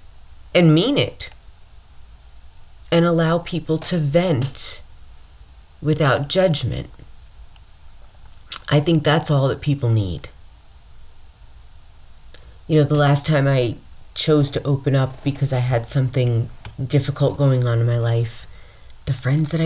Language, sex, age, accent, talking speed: English, female, 40-59, American, 120 wpm